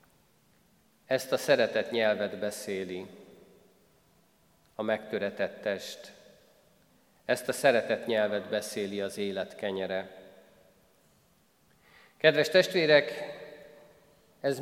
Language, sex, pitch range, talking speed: Hungarian, male, 115-150 Hz, 80 wpm